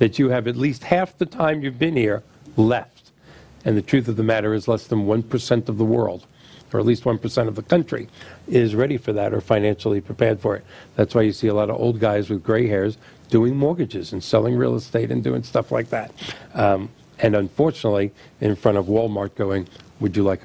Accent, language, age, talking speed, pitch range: American, English, 50-69, 220 wpm, 105-125 Hz